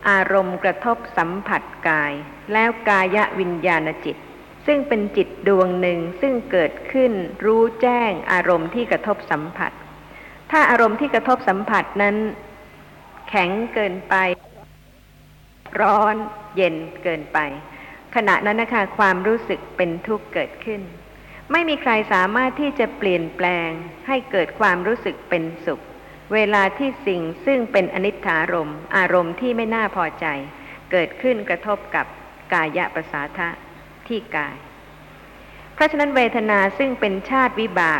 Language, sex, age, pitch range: Thai, female, 60-79, 180-225 Hz